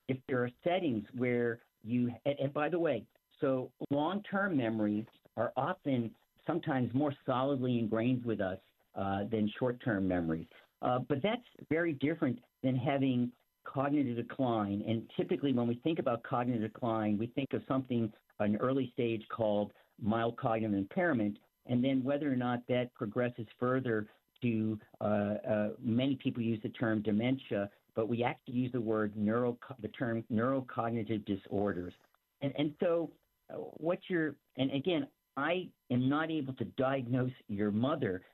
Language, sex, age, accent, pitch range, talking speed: English, male, 50-69, American, 110-140 Hz, 150 wpm